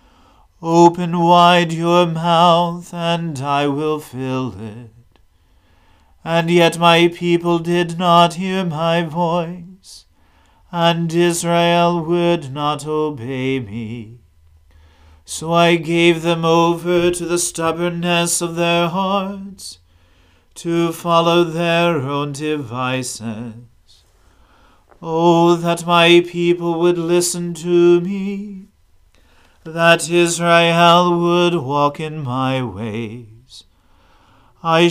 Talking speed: 95 wpm